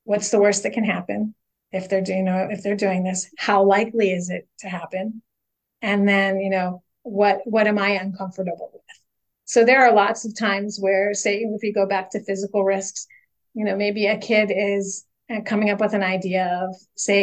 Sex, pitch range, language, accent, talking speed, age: female, 195-225 Hz, English, American, 205 wpm, 30-49